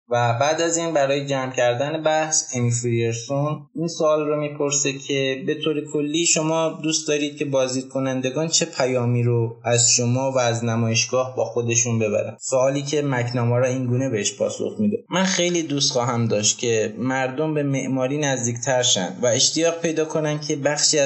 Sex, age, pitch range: male, 20-39, 120-150 Hz